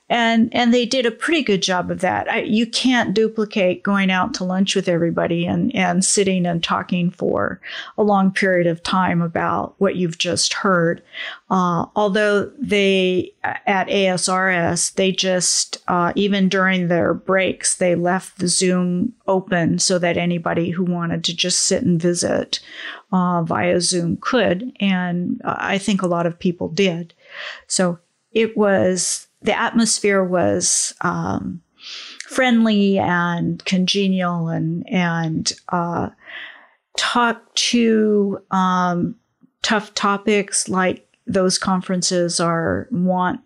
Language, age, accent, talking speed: English, 40-59, American, 135 wpm